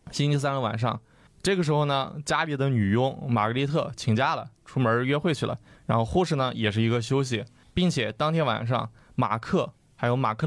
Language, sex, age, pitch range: Chinese, male, 20-39, 110-140 Hz